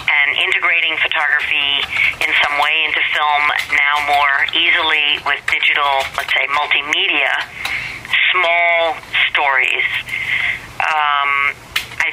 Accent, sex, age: American, female, 40-59